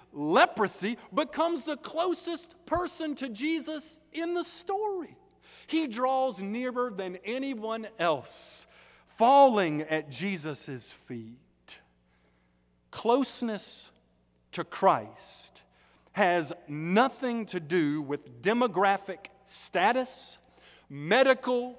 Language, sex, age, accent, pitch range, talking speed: English, male, 50-69, American, 155-255 Hz, 85 wpm